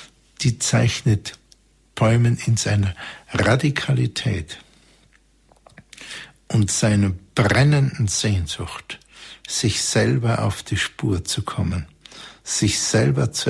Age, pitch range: 60-79, 95-120 Hz